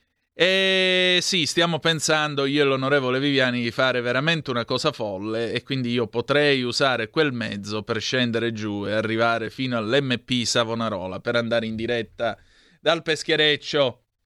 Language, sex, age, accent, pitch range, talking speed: Italian, male, 30-49, native, 120-155 Hz, 145 wpm